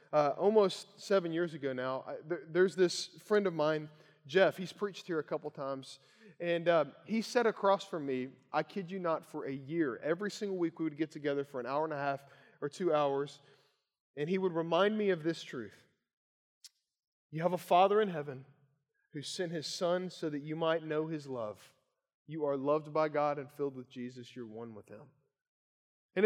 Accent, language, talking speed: American, English, 200 wpm